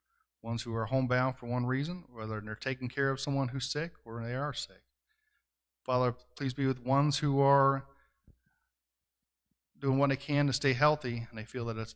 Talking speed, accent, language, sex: 190 wpm, American, English, male